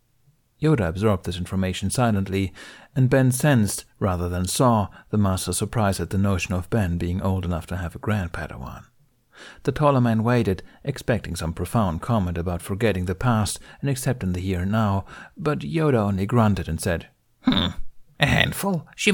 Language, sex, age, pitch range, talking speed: English, male, 60-79, 95-125 Hz, 170 wpm